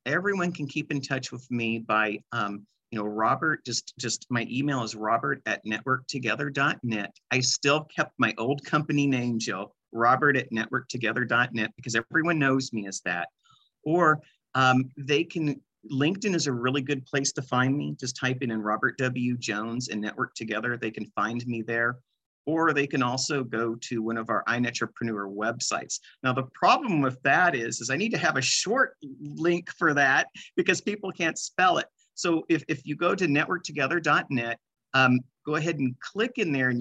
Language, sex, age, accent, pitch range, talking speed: English, male, 50-69, American, 115-145 Hz, 185 wpm